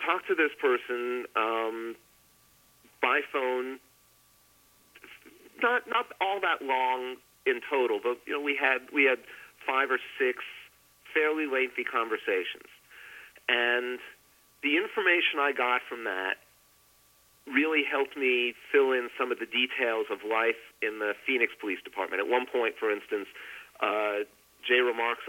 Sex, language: male, English